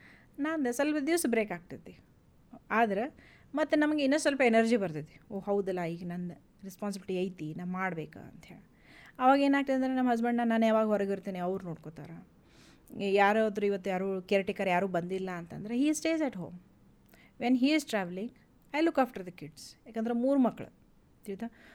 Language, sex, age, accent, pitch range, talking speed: Kannada, female, 30-49, native, 190-245 Hz, 155 wpm